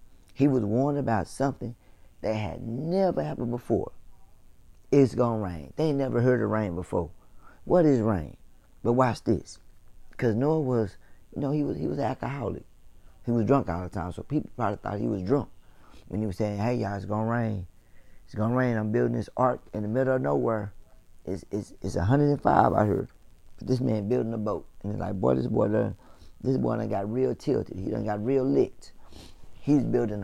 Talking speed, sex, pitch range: 210 wpm, male, 90-125 Hz